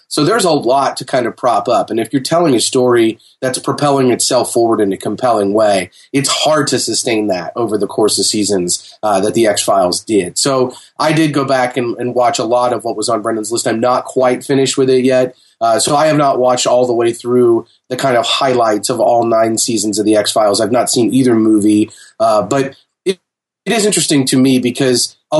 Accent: American